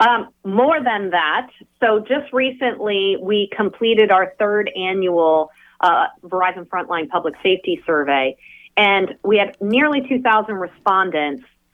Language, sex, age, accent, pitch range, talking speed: English, female, 40-59, American, 185-255 Hz, 125 wpm